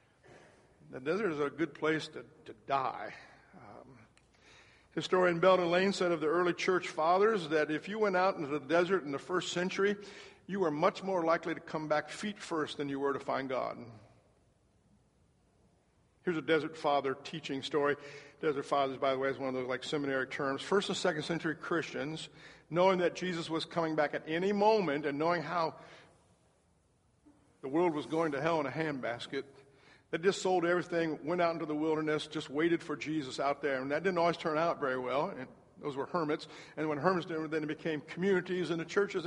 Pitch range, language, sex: 145-180 Hz, English, male